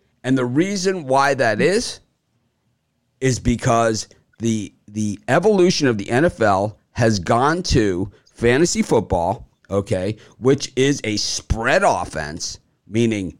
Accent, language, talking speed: American, English, 115 wpm